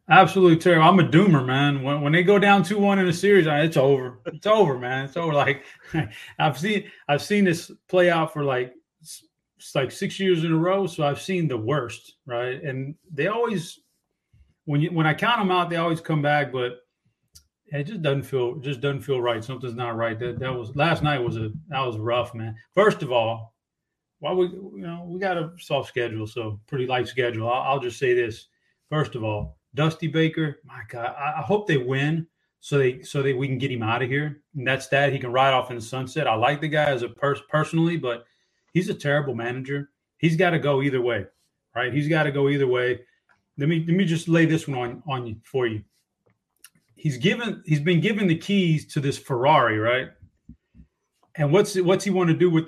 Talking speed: 220 wpm